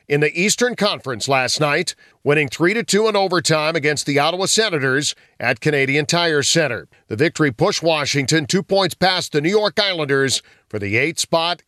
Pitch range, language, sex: 145-190 Hz, English, male